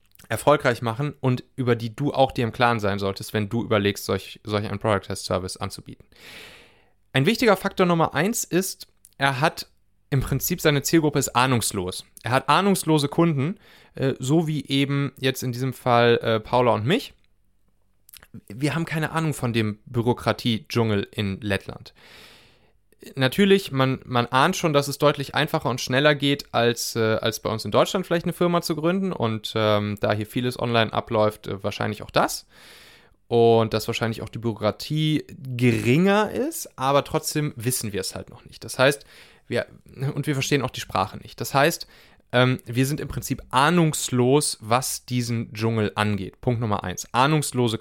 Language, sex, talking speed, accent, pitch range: German, male, 170 wpm, German, 110-150 Hz